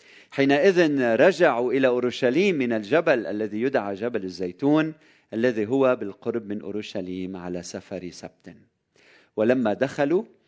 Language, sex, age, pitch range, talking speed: Arabic, male, 40-59, 115-155 Hz, 115 wpm